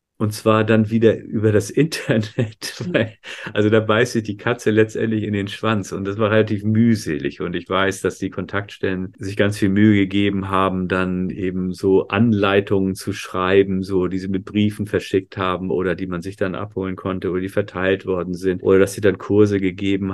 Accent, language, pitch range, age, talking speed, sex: German, German, 95-110 Hz, 40-59, 195 wpm, male